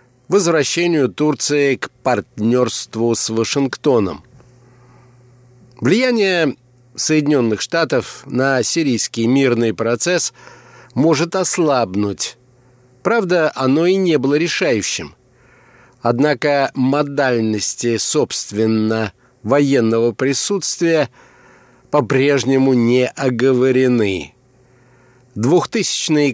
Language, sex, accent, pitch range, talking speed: Russian, male, native, 120-145 Hz, 70 wpm